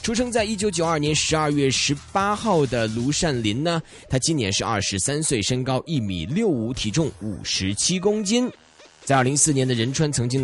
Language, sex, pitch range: Chinese, male, 115-175 Hz